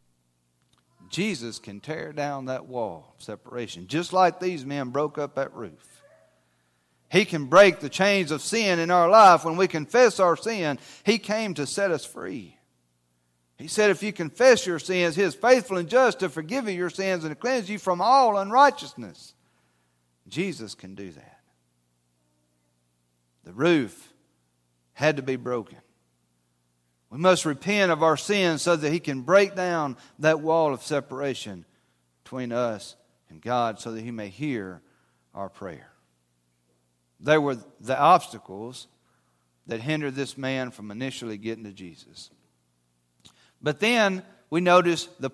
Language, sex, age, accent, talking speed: English, male, 40-59, American, 150 wpm